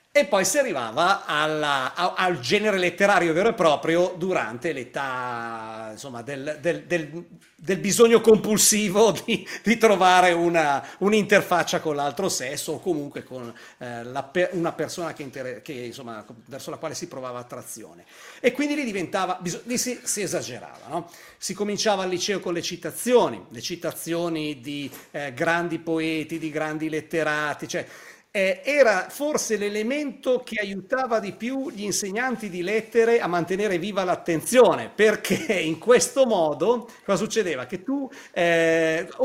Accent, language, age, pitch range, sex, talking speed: native, Italian, 50-69, 155-215 Hz, male, 125 wpm